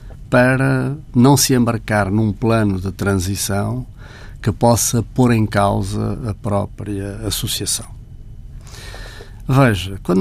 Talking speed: 105 wpm